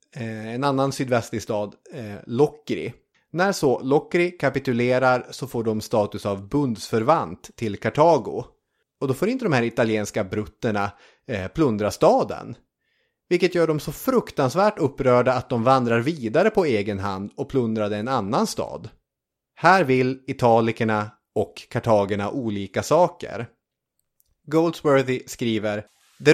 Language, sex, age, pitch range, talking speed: English, male, 30-49, 110-145 Hz, 125 wpm